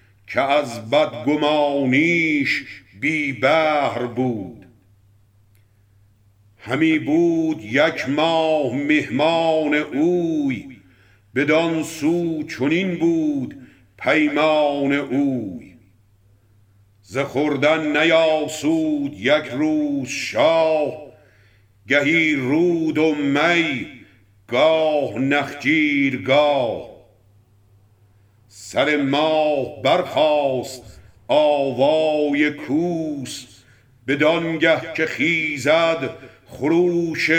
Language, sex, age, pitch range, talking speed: Persian, male, 60-79, 105-160 Hz, 65 wpm